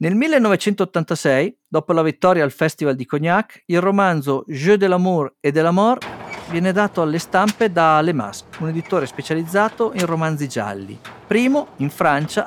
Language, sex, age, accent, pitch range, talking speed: Italian, male, 50-69, native, 145-210 Hz, 165 wpm